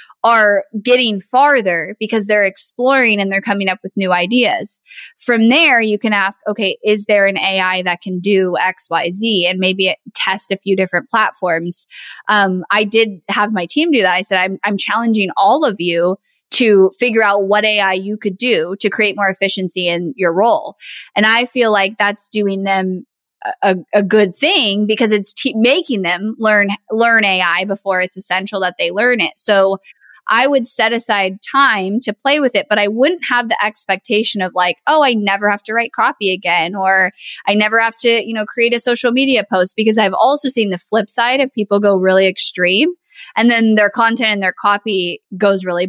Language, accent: English, American